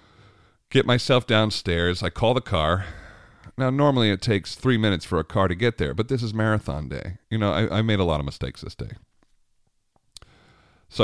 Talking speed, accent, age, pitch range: 195 wpm, American, 40-59, 80-110 Hz